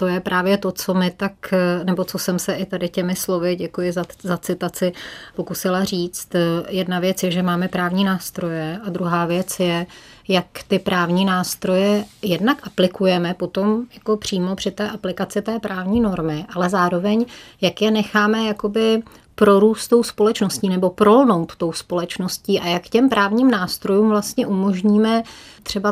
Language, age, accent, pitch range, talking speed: Czech, 30-49, native, 180-210 Hz, 155 wpm